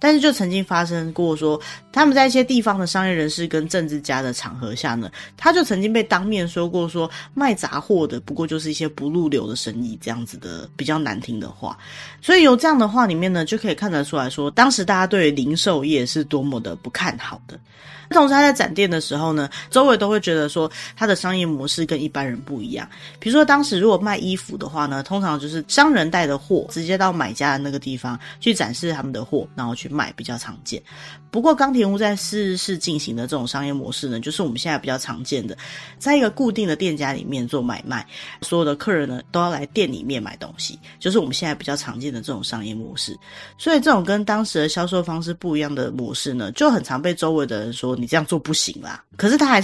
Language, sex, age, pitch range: Chinese, female, 20-39, 140-200 Hz